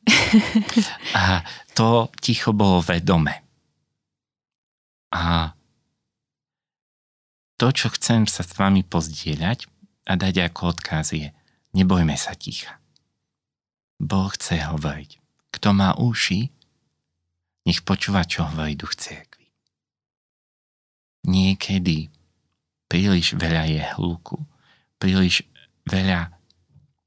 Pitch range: 80-100 Hz